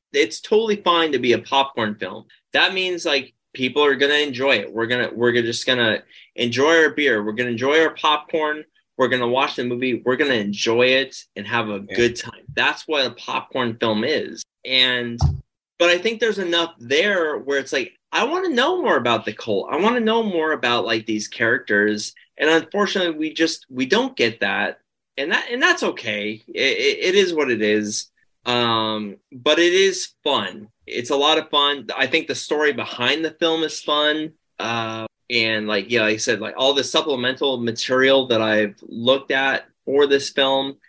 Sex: male